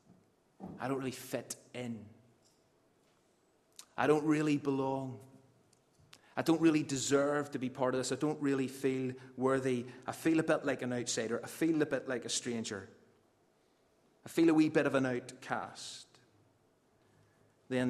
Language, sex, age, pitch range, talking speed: English, male, 30-49, 105-135 Hz, 155 wpm